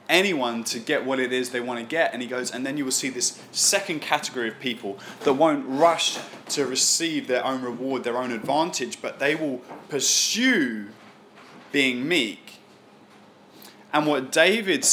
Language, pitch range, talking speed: English, 115-145 Hz, 175 wpm